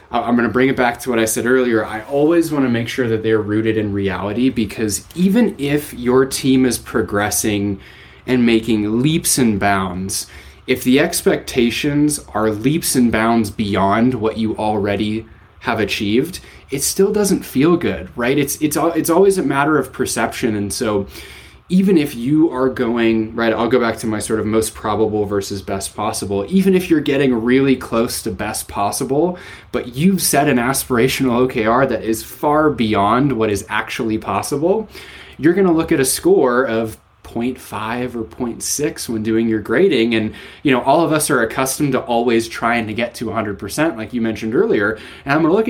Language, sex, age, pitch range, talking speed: English, male, 20-39, 105-135 Hz, 185 wpm